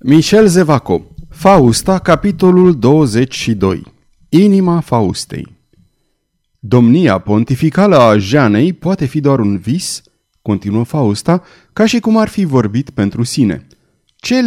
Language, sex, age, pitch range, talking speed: Romanian, male, 30-49, 115-175 Hz, 110 wpm